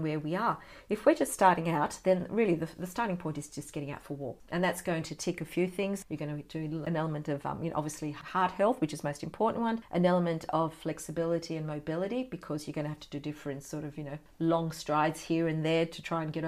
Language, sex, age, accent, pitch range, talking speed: English, female, 40-59, Australian, 155-185 Hz, 265 wpm